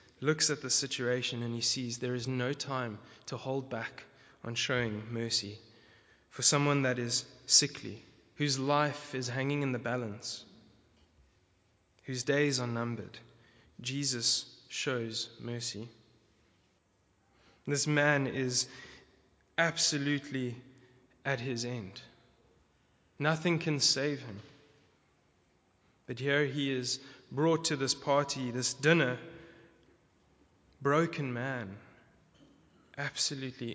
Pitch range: 115-145 Hz